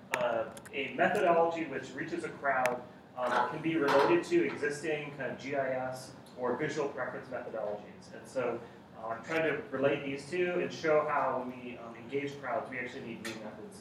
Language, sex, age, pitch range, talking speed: English, male, 30-49, 125-155 Hz, 180 wpm